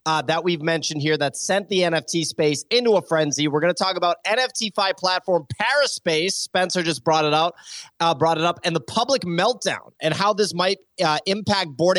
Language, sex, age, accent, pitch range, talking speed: English, male, 30-49, American, 150-195 Hz, 210 wpm